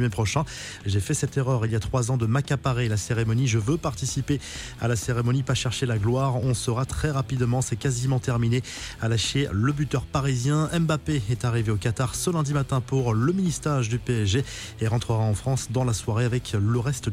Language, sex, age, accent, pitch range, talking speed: French, male, 20-39, French, 115-135 Hz, 205 wpm